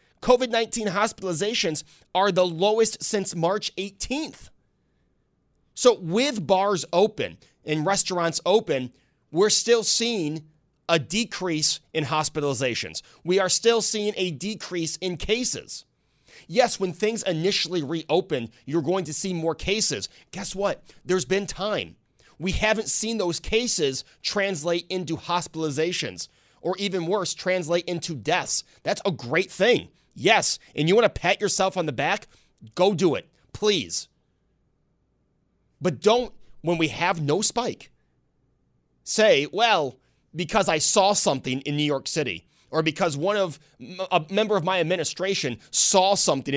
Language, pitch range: English, 155-200 Hz